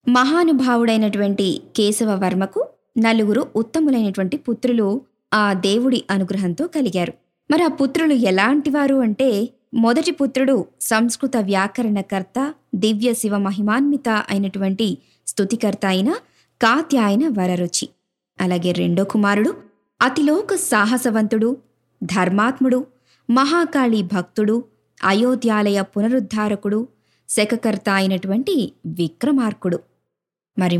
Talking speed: 75 wpm